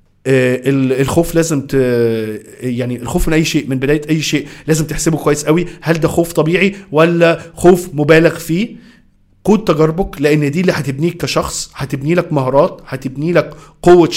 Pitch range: 145-180 Hz